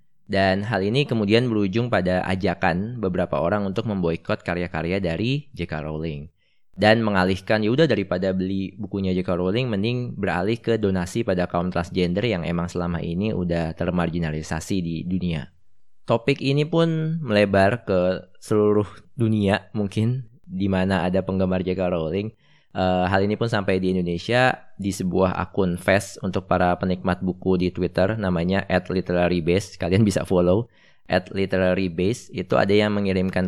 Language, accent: Indonesian, native